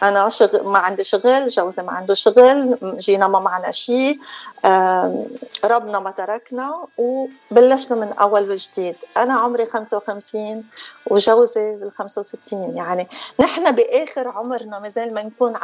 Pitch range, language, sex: 205-260 Hz, Arabic, female